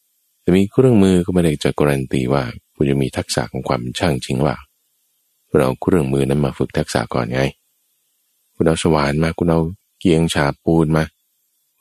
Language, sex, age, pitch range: Thai, male, 20-39, 70-95 Hz